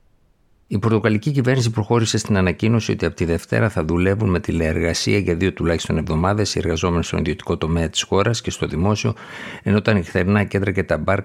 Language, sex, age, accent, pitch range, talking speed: Greek, male, 50-69, native, 85-105 Hz, 185 wpm